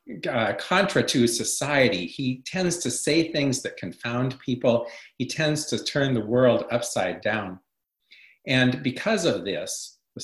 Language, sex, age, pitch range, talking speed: English, male, 50-69, 115-150 Hz, 145 wpm